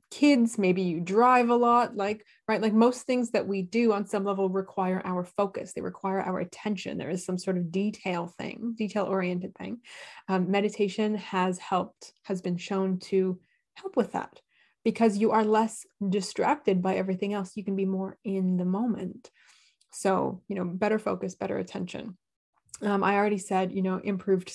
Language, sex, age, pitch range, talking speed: English, female, 20-39, 190-230 Hz, 180 wpm